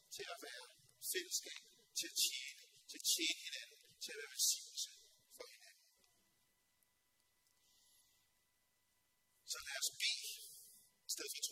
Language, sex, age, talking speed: Danish, male, 40-59, 115 wpm